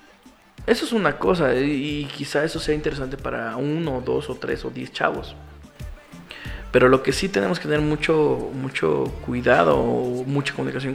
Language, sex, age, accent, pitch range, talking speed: Spanish, male, 20-39, Mexican, 120-145 Hz, 165 wpm